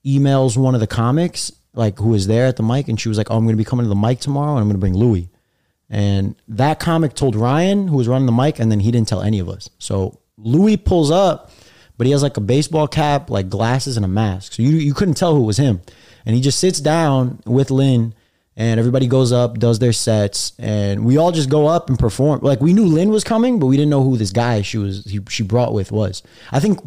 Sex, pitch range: male, 105-140 Hz